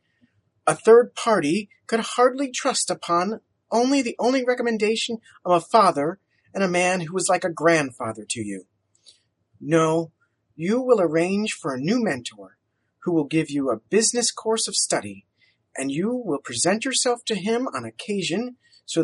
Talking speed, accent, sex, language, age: 160 wpm, American, male, English, 30-49